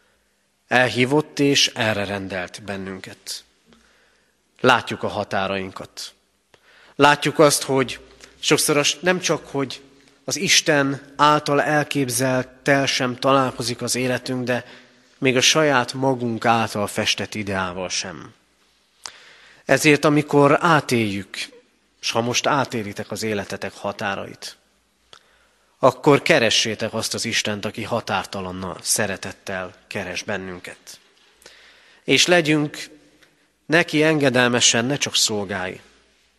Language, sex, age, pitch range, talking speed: Hungarian, male, 30-49, 110-145 Hz, 100 wpm